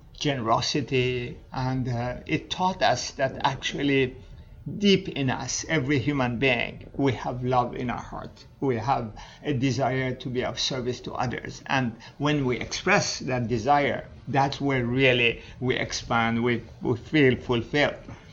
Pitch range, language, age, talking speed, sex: 125-145 Hz, English, 50-69, 145 wpm, male